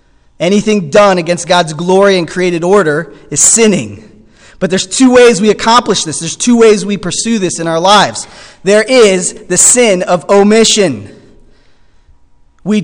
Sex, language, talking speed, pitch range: male, English, 155 wpm, 185-245 Hz